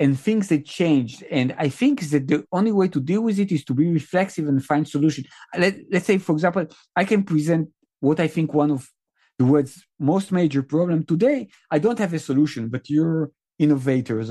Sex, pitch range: male, 145-205 Hz